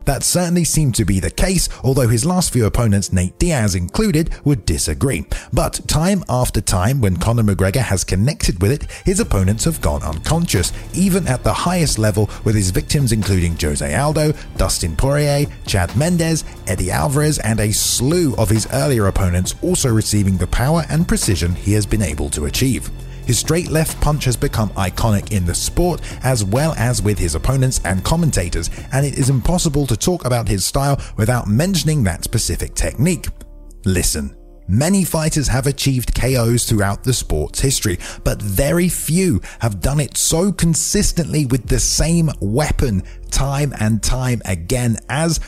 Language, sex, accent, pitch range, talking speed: English, male, British, 95-150 Hz, 170 wpm